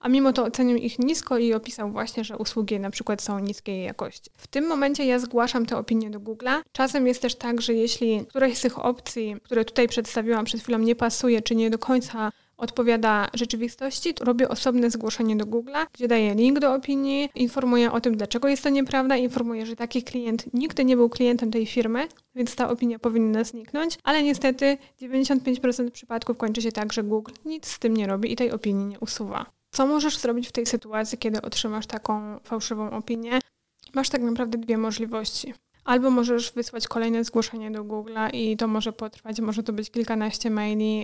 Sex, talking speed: female, 195 wpm